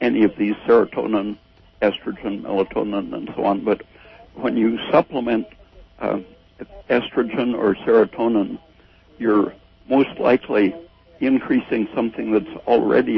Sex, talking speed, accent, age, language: male, 110 wpm, American, 60-79, English